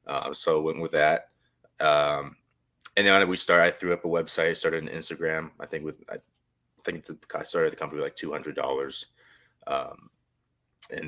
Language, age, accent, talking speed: English, 20-39, American, 180 wpm